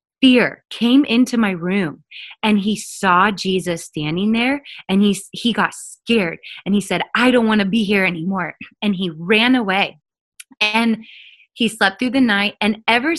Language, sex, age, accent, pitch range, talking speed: English, female, 20-39, American, 180-225 Hz, 175 wpm